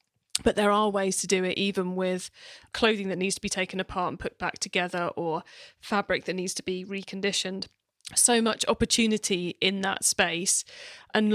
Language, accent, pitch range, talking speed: English, British, 185-215 Hz, 180 wpm